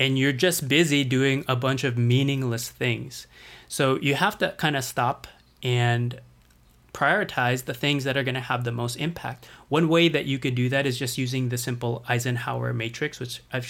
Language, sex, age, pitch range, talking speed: English, male, 20-39, 125-150 Hz, 195 wpm